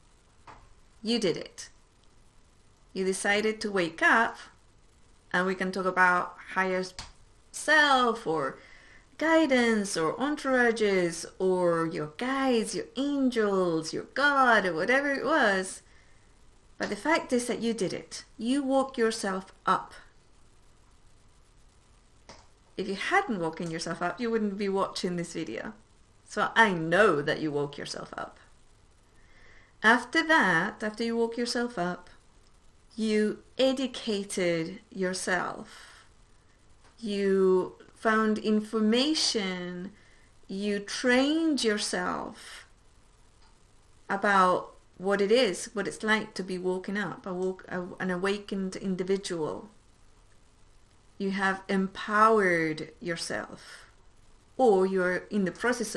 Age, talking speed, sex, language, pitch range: 30-49, 110 wpm, female, English, 175-230 Hz